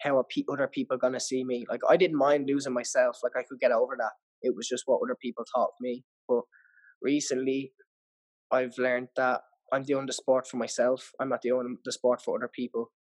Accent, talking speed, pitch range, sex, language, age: Irish, 215 wpm, 125-140 Hz, male, English, 20-39